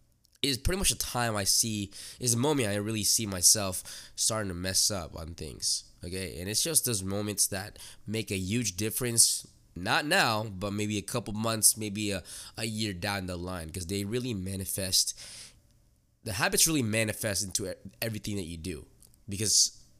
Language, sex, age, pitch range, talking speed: English, male, 20-39, 95-125 Hz, 175 wpm